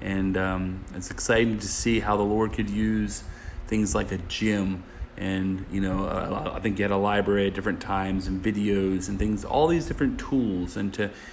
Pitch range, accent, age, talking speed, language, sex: 100-130 Hz, American, 30-49, 195 wpm, English, male